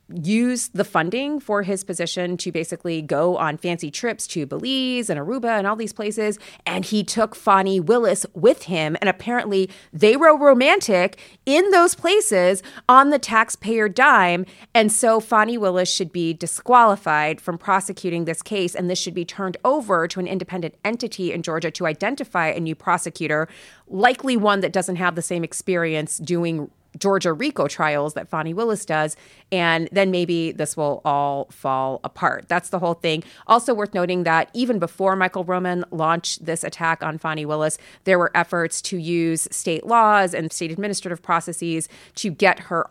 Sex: female